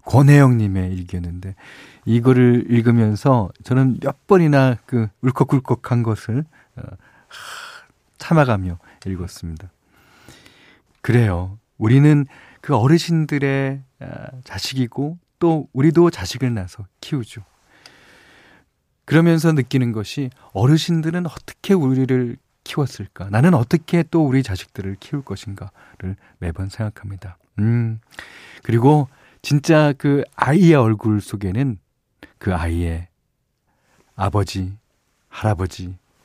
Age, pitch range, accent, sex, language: 40-59, 95-140 Hz, native, male, Korean